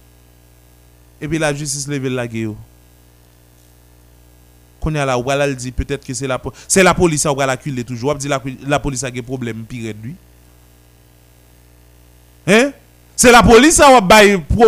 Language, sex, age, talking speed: French, male, 30-49, 145 wpm